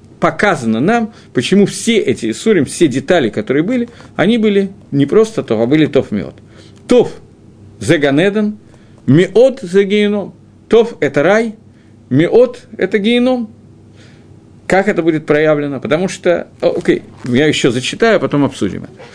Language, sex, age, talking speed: Russian, male, 50-69, 140 wpm